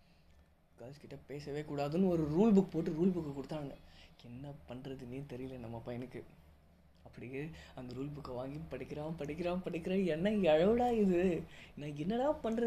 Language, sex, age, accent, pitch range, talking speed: English, female, 20-39, Indian, 125-170 Hz, 150 wpm